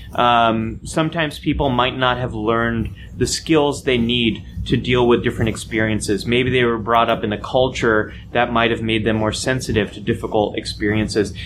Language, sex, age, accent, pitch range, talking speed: English, male, 30-49, American, 110-150 Hz, 180 wpm